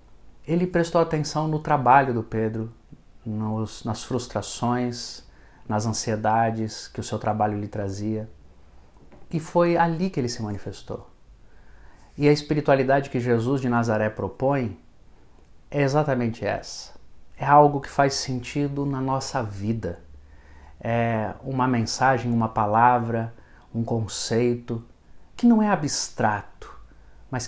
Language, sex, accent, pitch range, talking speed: Portuguese, male, Brazilian, 110-140 Hz, 120 wpm